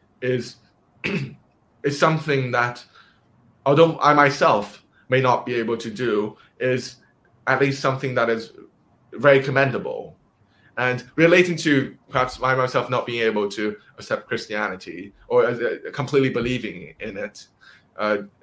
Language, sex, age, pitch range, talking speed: English, male, 20-39, 120-145 Hz, 130 wpm